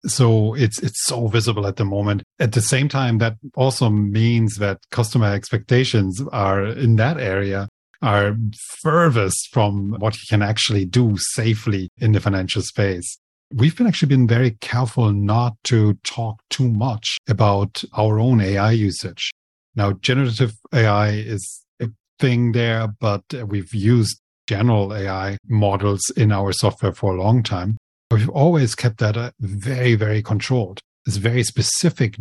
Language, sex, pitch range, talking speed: English, male, 100-120 Hz, 150 wpm